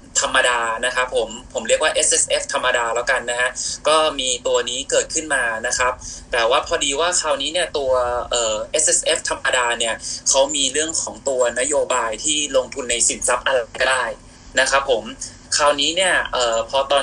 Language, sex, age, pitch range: Thai, male, 20-39, 125-165 Hz